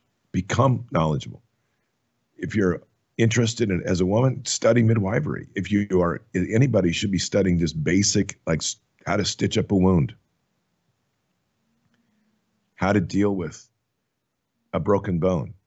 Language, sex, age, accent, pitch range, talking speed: English, male, 50-69, American, 90-110 Hz, 130 wpm